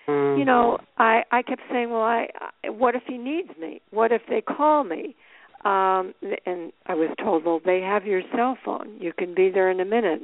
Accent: American